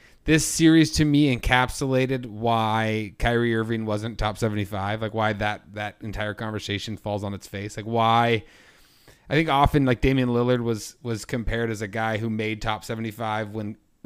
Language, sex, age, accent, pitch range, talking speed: English, male, 30-49, American, 110-130 Hz, 170 wpm